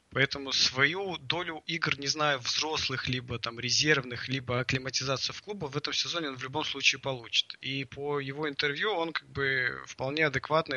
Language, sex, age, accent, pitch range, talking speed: Russian, male, 20-39, native, 125-150 Hz, 175 wpm